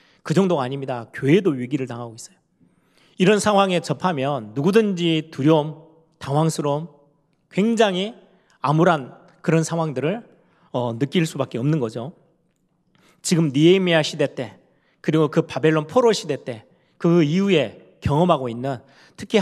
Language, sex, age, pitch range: Korean, male, 30-49, 135-185 Hz